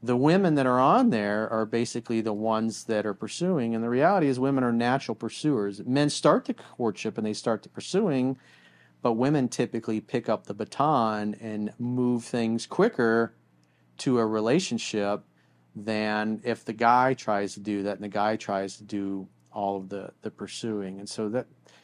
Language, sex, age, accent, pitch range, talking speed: English, male, 40-59, American, 105-125 Hz, 185 wpm